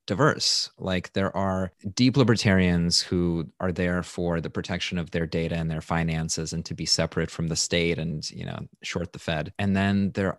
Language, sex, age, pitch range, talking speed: English, male, 30-49, 85-100 Hz, 195 wpm